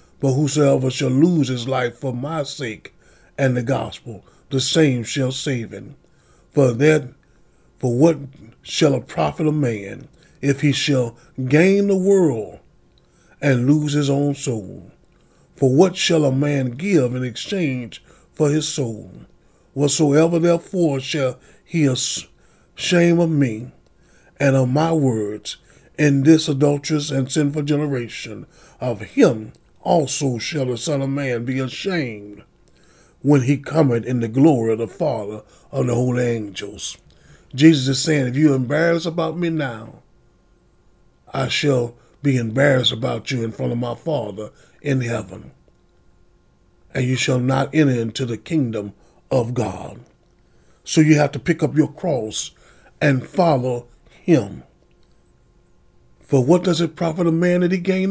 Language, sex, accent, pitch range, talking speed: English, male, American, 120-155 Hz, 150 wpm